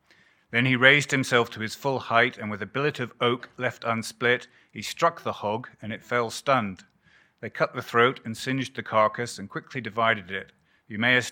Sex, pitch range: male, 105-125 Hz